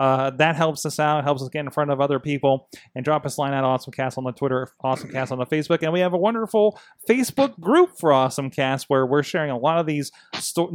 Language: English